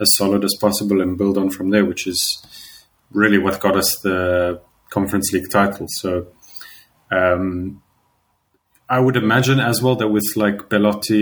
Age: 30-49